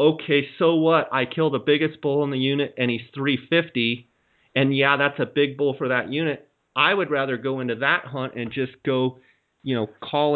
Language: English